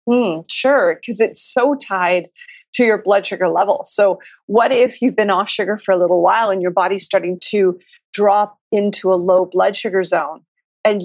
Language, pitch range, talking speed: English, 185-240 Hz, 190 wpm